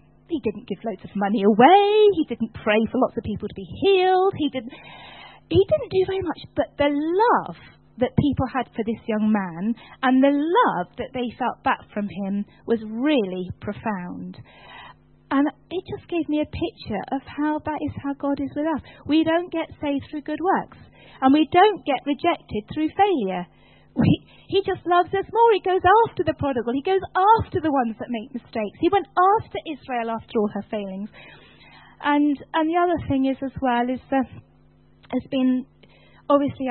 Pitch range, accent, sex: 220-310 Hz, British, female